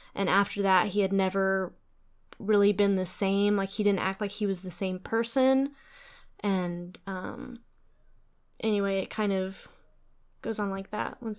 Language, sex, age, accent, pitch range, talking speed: English, female, 10-29, American, 195-220 Hz, 165 wpm